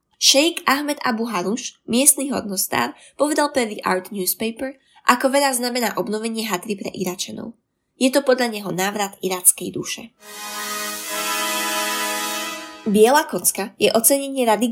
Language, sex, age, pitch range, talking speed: Slovak, female, 20-39, 190-245 Hz, 120 wpm